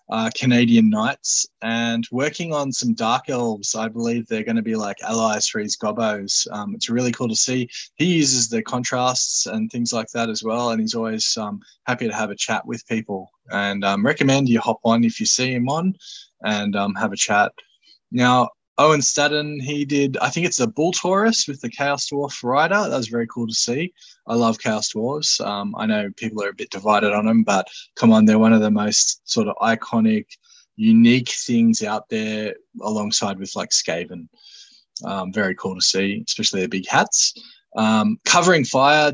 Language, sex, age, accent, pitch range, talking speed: English, male, 20-39, Australian, 110-145 Hz, 200 wpm